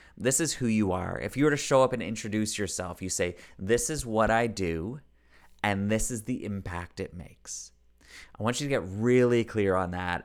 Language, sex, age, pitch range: English, male, 30-49, 90-110 Hz